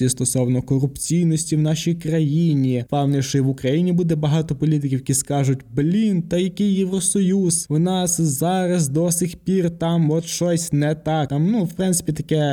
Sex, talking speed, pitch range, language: male, 165 wpm, 130-165 Hz, Ukrainian